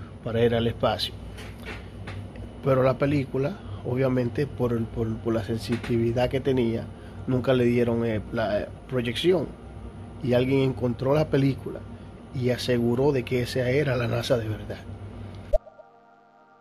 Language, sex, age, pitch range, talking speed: Spanish, male, 30-49, 105-120 Hz, 135 wpm